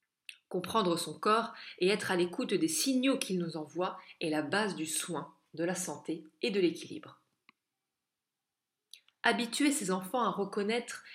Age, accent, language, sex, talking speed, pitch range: 20-39, French, French, female, 150 wpm, 170-225 Hz